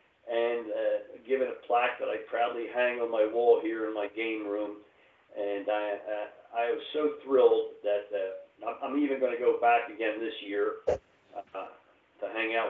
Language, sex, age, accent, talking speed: English, male, 50-69, American, 185 wpm